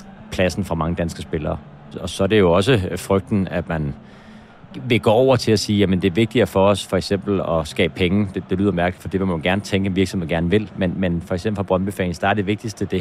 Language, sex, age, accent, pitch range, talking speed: Danish, male, 30-49, native, 90-105 Hz, 265 wpm